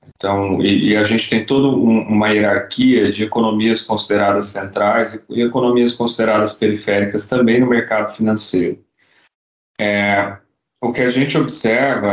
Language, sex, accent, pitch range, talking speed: Portuguese, male, Brazilian, 100-120 Hz, 145 wpm